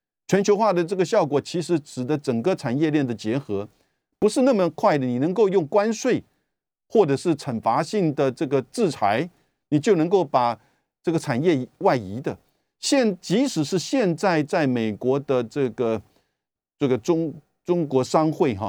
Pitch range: 125-175 Hz